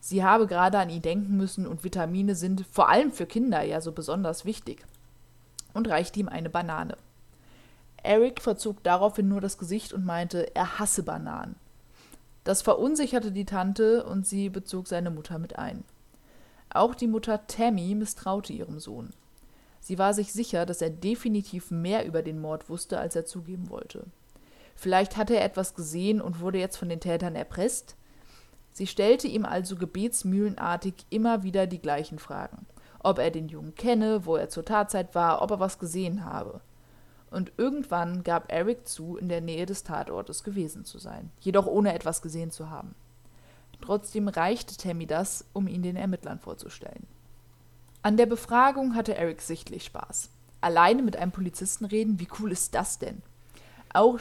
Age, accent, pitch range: 20-39, German, 170-215 Hz